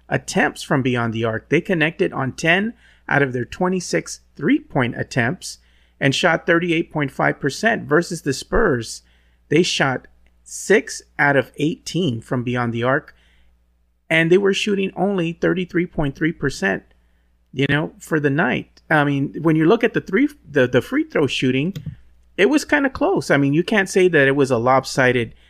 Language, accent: English, American